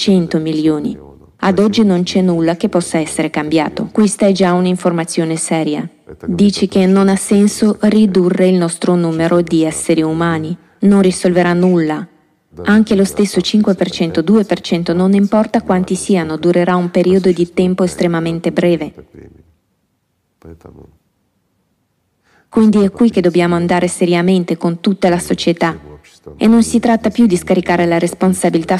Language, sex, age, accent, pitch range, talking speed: Italian, female, 20-39, native, 165-195 Hz, 140 wpm